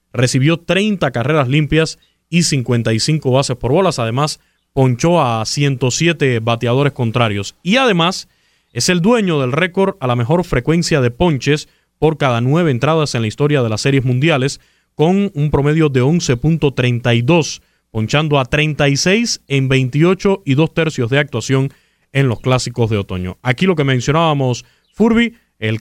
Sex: male